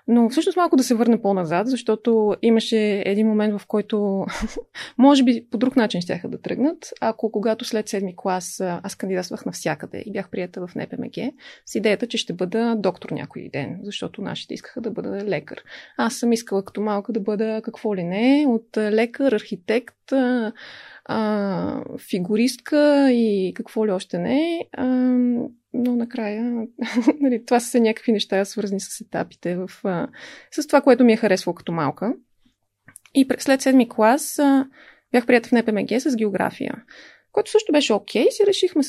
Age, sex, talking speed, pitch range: 20-39, female, 170 wpm, 205-260 Hz